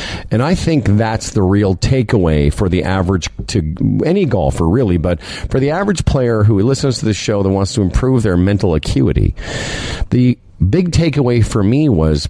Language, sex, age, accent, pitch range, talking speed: English, male, 50-69, American, 90-130 Hz, 180 wpm